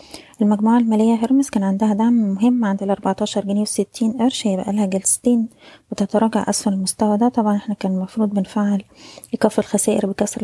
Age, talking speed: 20-39, 160 wpm